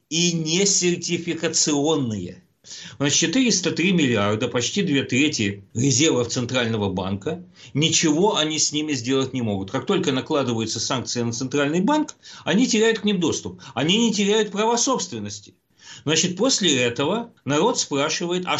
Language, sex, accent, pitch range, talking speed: Russian, male, native, 115-165 Hz, 135 wpm